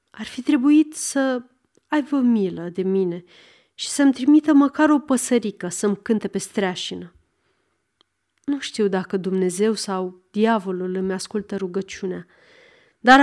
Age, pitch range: 30-49, 195-285 Hz